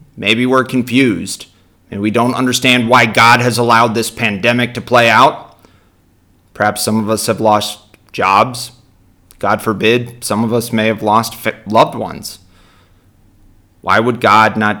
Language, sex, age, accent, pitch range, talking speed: English, male, 30-49, American, 100-120 Hz, 150 wpm